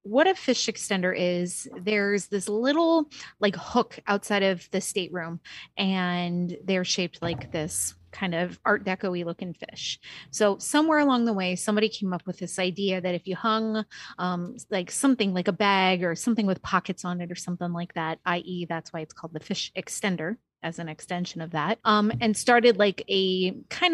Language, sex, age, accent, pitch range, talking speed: English, female, 30-49, American, 180-215 Hz, 190 wpm